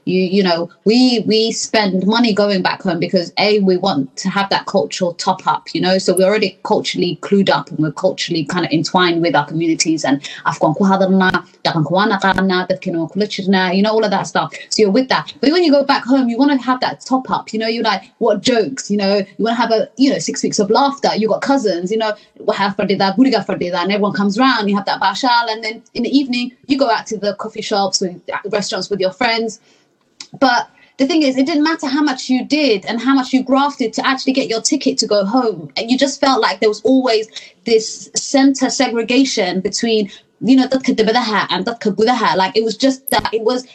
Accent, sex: British, female